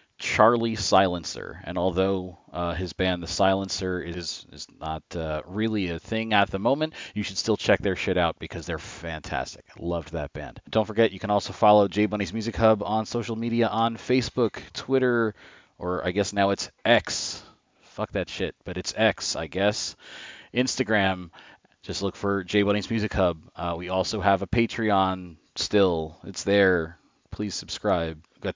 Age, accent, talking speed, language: 30-49, American, 170 wpm, English